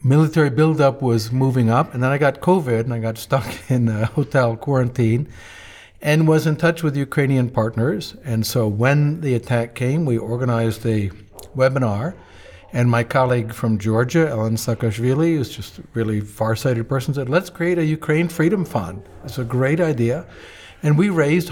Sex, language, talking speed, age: male, English, 175 wpm, 60-79